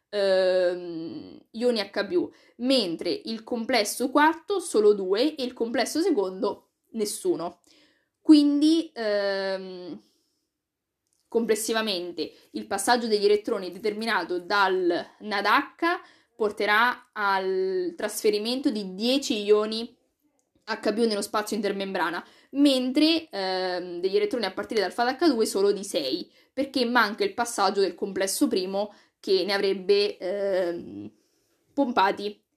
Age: 20-39